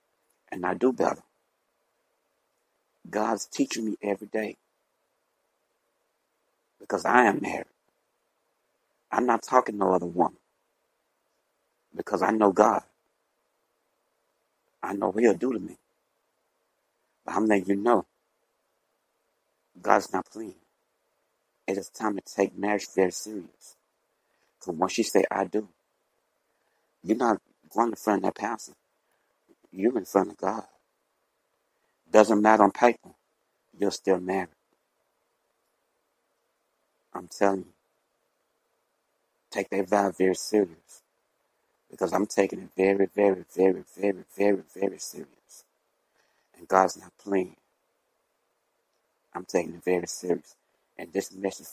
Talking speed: 120 wpm